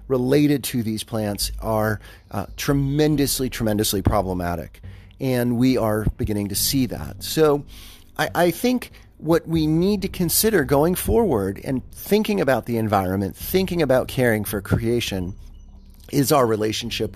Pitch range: 100-130 Hz